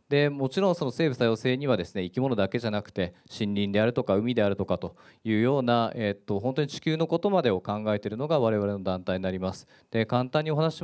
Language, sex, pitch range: Japanese, male, 100-145 Hz